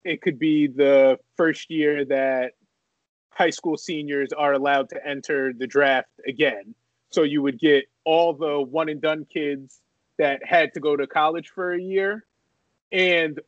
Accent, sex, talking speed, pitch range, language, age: American, male, 155 wpm, 140-165 Hz, English, 30-49